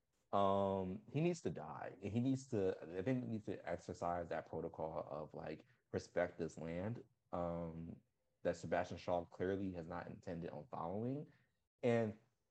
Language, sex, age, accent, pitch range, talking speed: English, male, 30-49, American, 85-100 Hz, 155 wpm